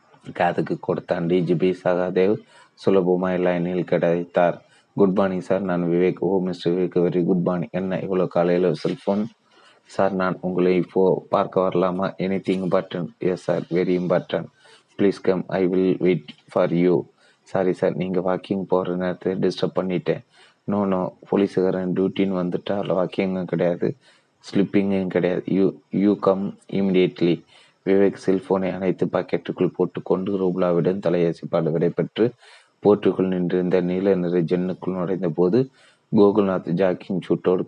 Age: 30-49